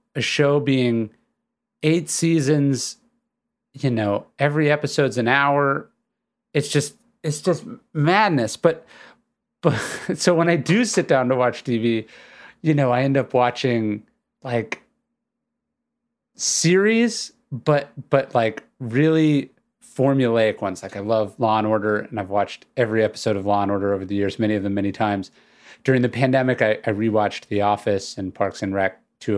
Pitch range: 105-155 Hz